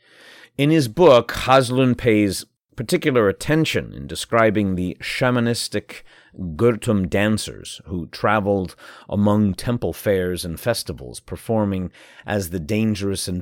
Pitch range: 95-120 Hz